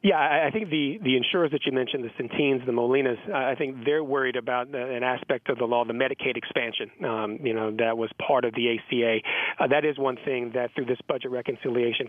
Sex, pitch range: male, 120-140 Hz